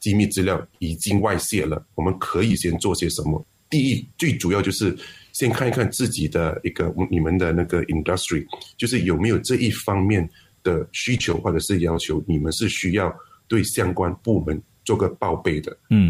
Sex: male